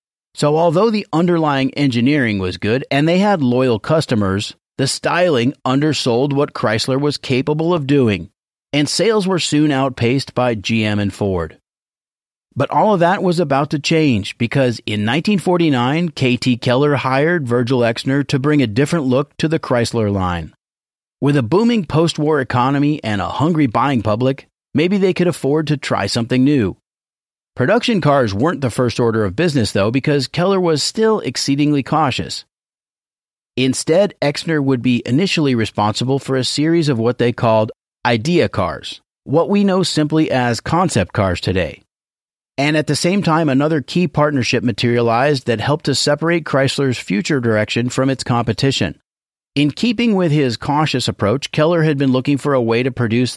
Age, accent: 40-59, American